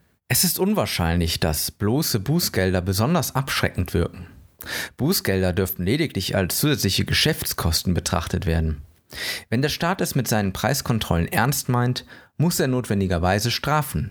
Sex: male